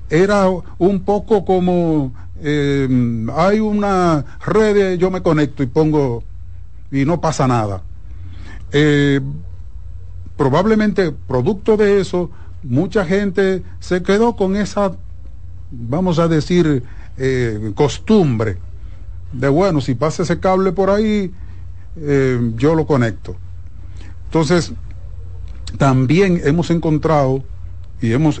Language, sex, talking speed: Spanish, male, 110 wpm